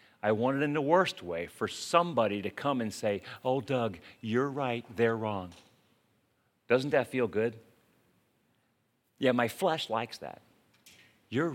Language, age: English, 50-69